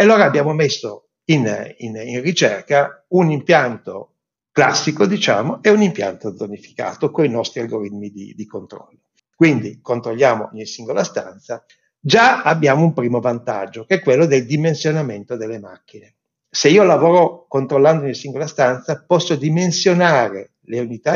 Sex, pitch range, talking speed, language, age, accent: male, 115-165 Hz, 145 wpm, Italian, 60-79, native